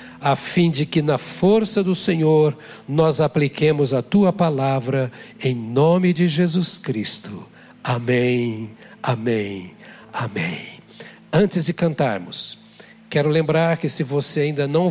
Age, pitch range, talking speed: 60-79, 130-170 Hz, 125 wpm